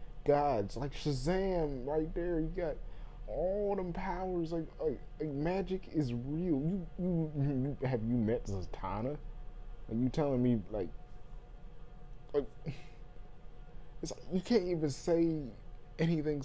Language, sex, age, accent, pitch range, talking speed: English, male, 20-39, American, 120-155 Hz, 135 wpm